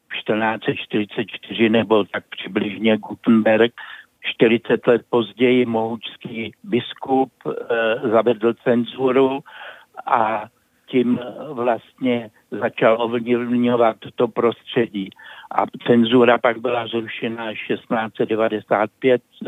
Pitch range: 115-130 Hz